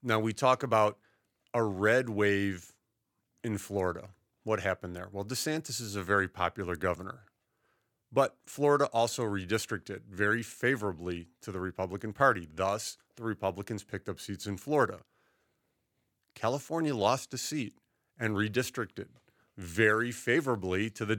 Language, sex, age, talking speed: English, male, 40-59, 135 wpm